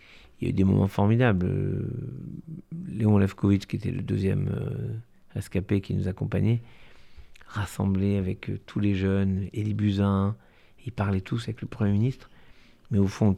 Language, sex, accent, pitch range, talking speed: French, male, French, 100-125 Hz, 155 wpm